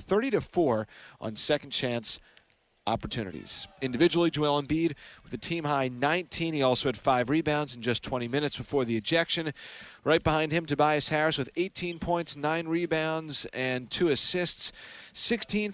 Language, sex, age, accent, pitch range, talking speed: English, male, 40-59, American, 125-160 Hz, 155 wpm